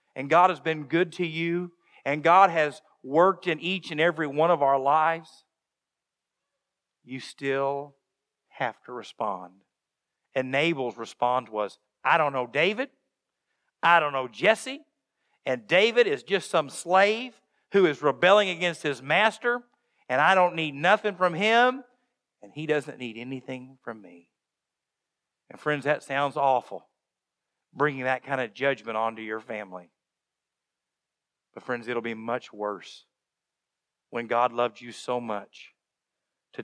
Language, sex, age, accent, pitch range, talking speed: English, male, 50-69, American, 115-165 Hz, 145 wpm